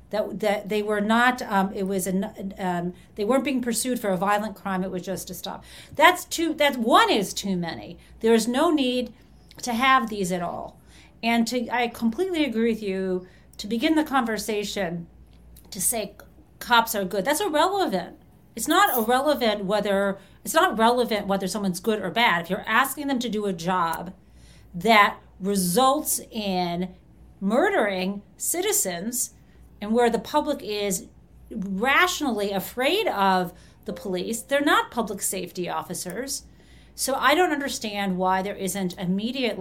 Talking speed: 160 wpm